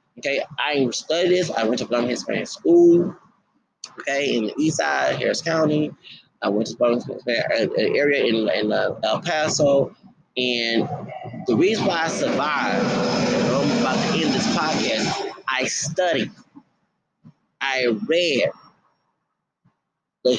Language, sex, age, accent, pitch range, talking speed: English, male, 30-49, American, 140-185 Hz, 145 wpm